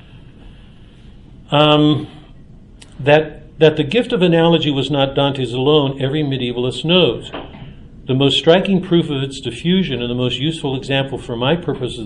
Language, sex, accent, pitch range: English, male, American, 125-155 Hz